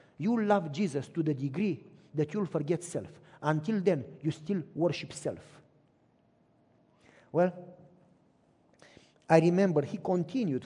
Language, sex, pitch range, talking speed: English, male, 155-205 Hz, 120 wpm